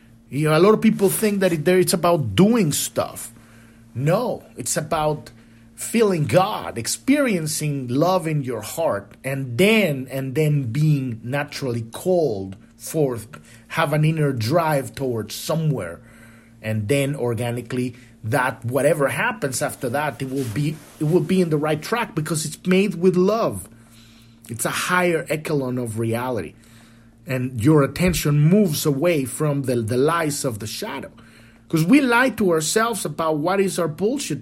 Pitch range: 125-210 Hz